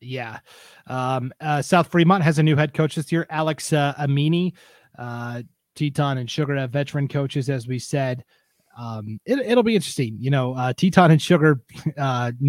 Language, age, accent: English, 30-49, American